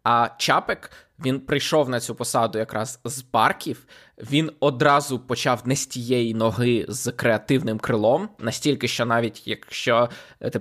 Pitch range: 115-135 Hz